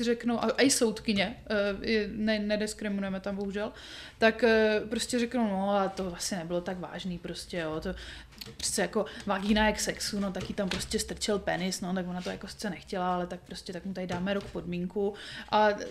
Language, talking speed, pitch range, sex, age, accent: Czech, 180 wpm, 200-250 Hz, female, 20-39, native